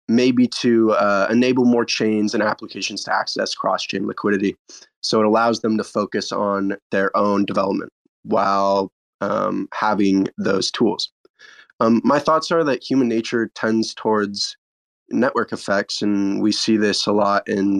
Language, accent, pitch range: English, American, 100-120 Hz